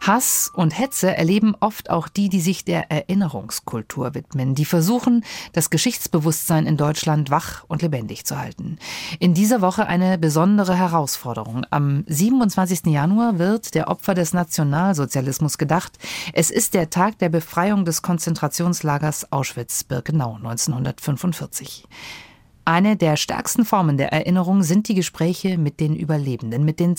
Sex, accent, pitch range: female, German, 150-195 Hz